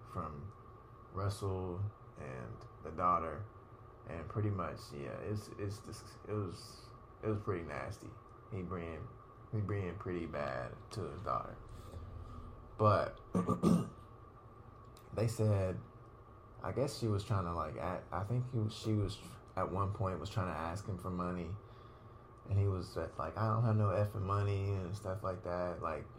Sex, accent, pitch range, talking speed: male, American, 90-110 Hz, 155 wpm